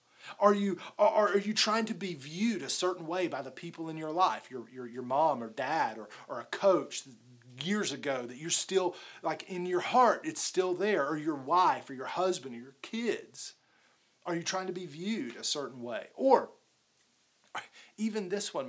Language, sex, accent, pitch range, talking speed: English, male, American, 140-210 Hz, 200 wpm